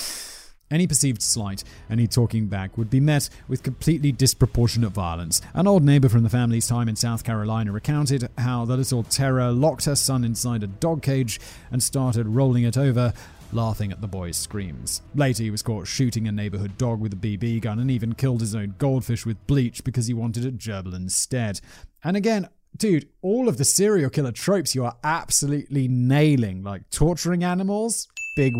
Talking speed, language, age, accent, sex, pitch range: 185 wpm, English, 30-49, British, male, 110-160 Hz